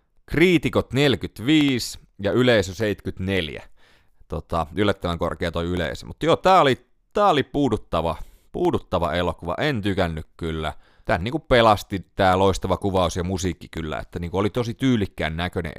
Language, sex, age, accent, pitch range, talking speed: Finnish, male, 30-49, native, 85-110 Hz, 140 wpm